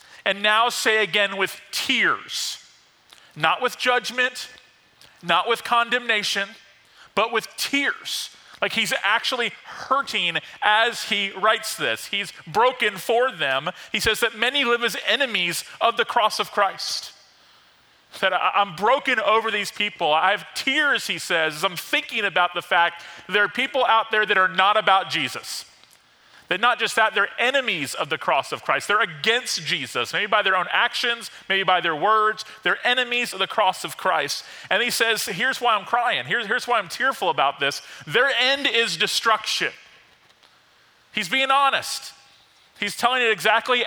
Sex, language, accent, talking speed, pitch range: male, English, American, 165 wpm, 195-240 Hz